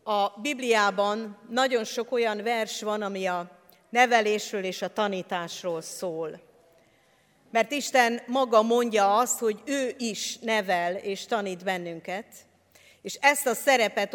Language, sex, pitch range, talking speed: Hungarian, female, 205-250 Hz, 125 wpm